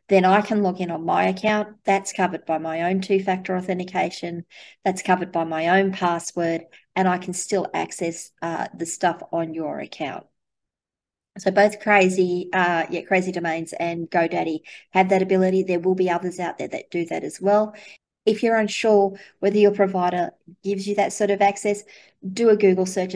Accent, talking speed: Australian, 185 wpm